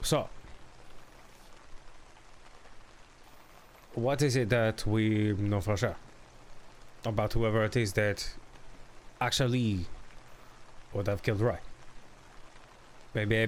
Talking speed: 95 wpm